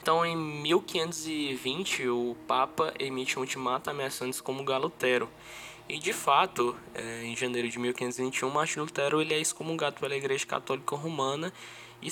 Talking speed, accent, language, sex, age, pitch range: 140 wpm, Brazilian, Portuguese, male, 10-29, 120-140 Hz